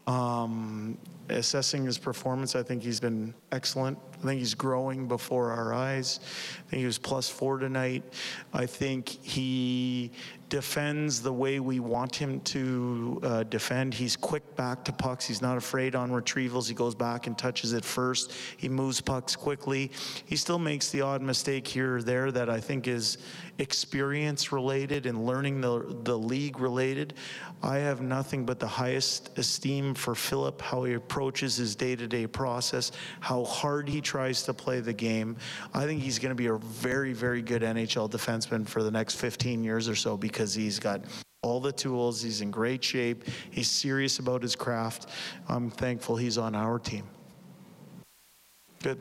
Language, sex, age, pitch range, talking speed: English, male, 40-59, 120-135 Hz, 175 wpm